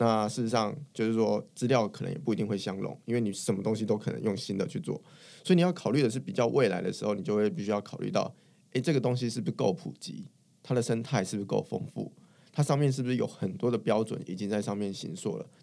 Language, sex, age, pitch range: Chinese, male, 20-39, 100-135 Hz